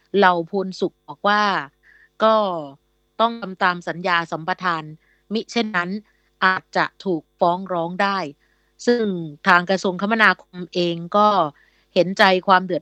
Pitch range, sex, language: 170-200 Hz, female, Thai